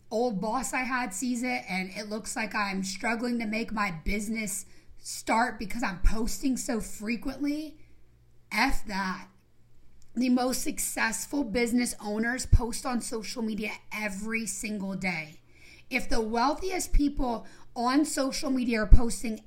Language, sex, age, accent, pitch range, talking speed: English, female, 30-49, American, 195-250 Hz, 140 wpm